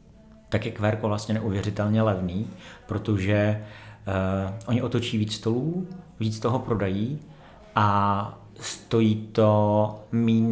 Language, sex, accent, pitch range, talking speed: Czech, male, native, 100-115 Hz, 105 wpm